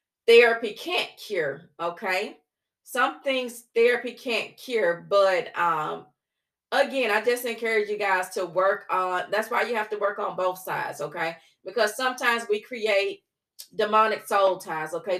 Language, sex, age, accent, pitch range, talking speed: English, female, 30-49, American, 195-265 Hz, 150 wpm